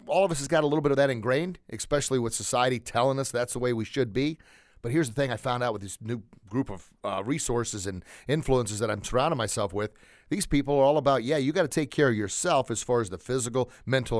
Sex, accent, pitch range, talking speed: male, American, 110-135 Hz, 260 wpm